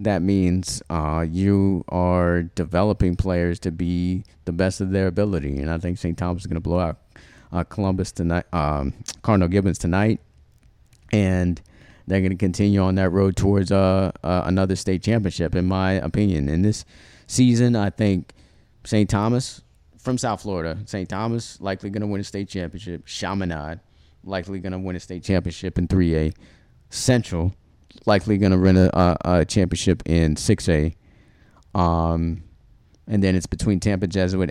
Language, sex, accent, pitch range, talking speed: English, male, American, 85-100 Hz, 165 wpm